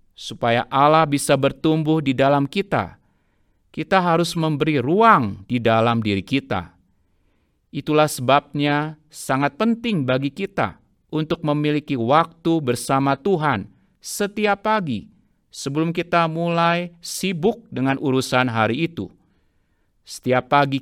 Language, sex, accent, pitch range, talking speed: Indonesian, male, native, 125-170 Hz, 110 wpm